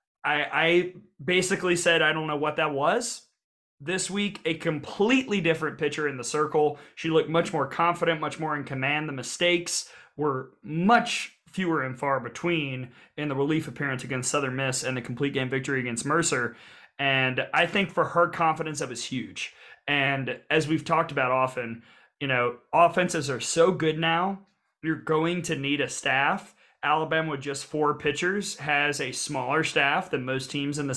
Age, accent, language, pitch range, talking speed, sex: 30-49, American, English, 135-165 Hz, 180 wpm, male